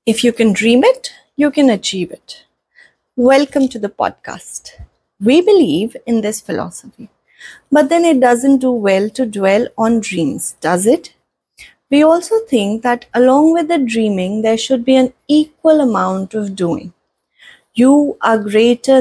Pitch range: 210-290 Hz